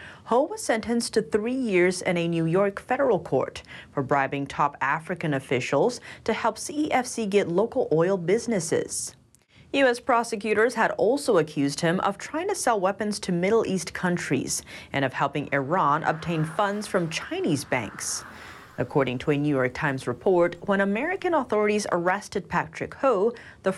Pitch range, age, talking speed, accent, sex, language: 155-225 Hz, 30-49, 155 wpm, American, female, English